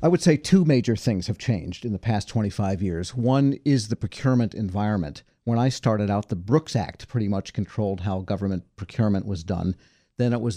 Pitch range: 100-120 Hz